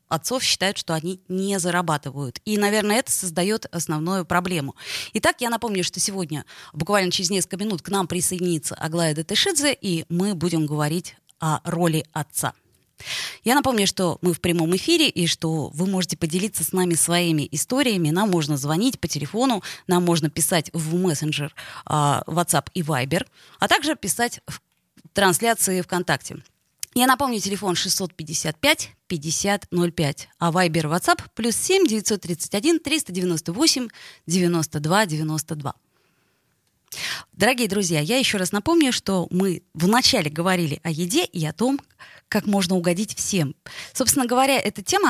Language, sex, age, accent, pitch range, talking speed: Russian, female, 20-39, native, 165-215 Hz, 135 wpm